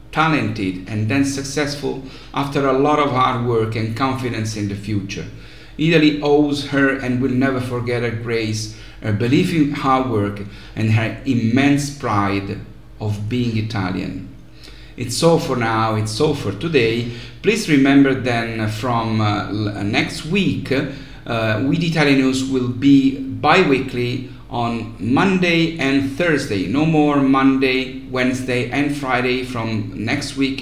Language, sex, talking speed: English, male, 145 wpm